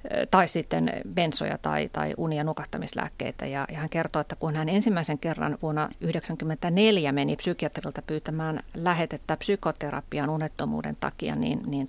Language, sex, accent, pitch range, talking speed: Finnish, female, native, 150-170 Hz, 135 wpm